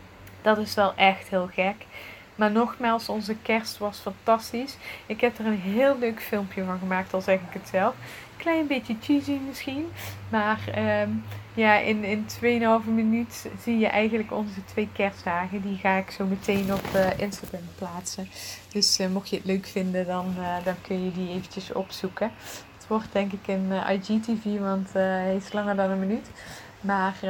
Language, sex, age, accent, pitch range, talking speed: English, female, 20-39, Dutch, 190-220 Hz, 180 wpm